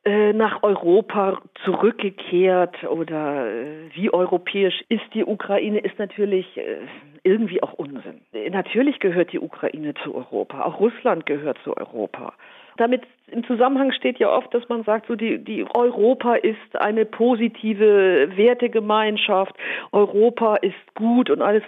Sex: female